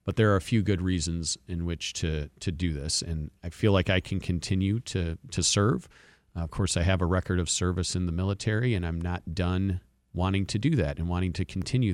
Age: 40-59